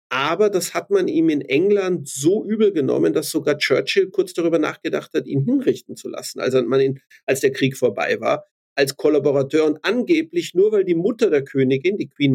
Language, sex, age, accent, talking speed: German, male, 50-69, German, 200 wpm